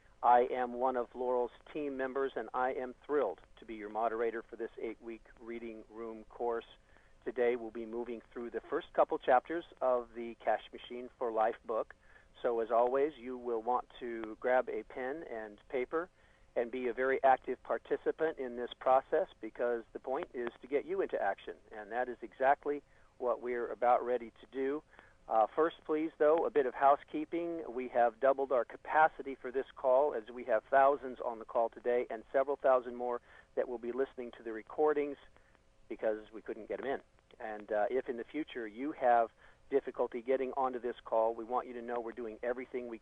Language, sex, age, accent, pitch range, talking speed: English, male, 50-69, American, 115-135 Hz, 195 wpm